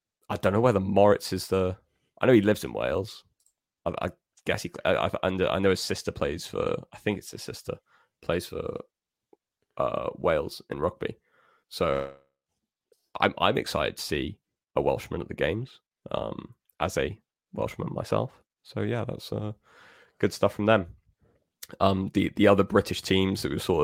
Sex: male